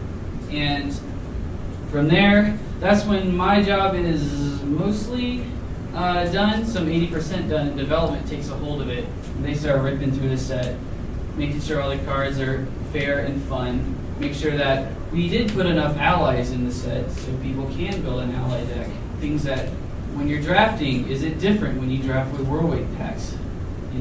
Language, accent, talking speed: English, American, 175 wpm